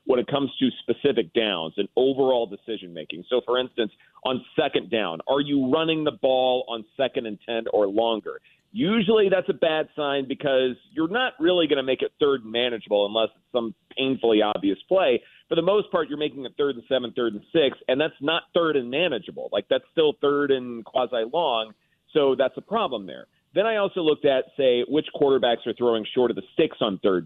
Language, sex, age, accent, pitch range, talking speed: English, male, 40-59, American, 115-160 Hz, 205 wpm